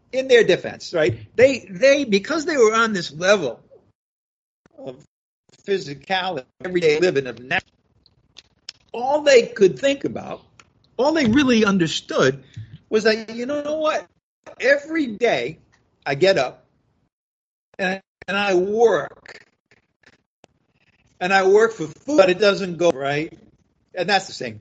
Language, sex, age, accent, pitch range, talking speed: English, male, 50-69, American, 155-240 Hz, 130 wpm